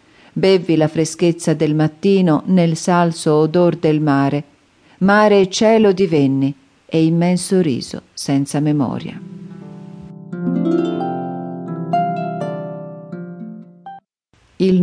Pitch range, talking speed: 145-180 Hz, 80 wpm